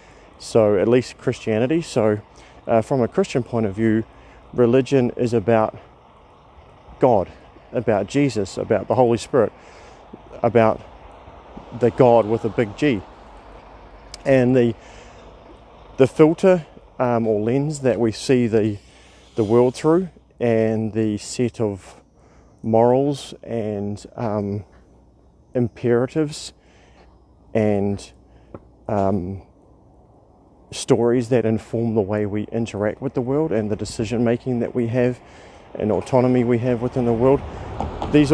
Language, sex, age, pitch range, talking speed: English, male, 40-59, 105-125 Hz, 120 wpm